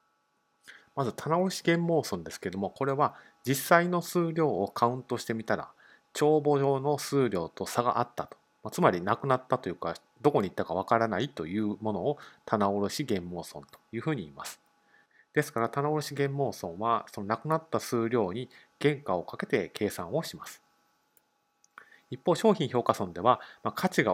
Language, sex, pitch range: Japanese, male, 105-150 Hz